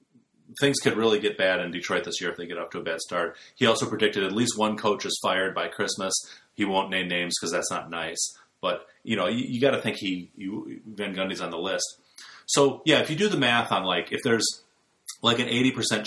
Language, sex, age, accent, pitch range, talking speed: English, male, 30-49, American, 95-140 Hz, 245 wpm